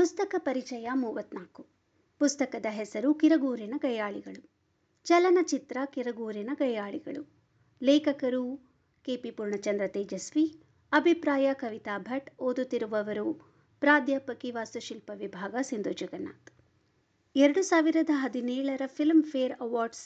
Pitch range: 235-300 Hz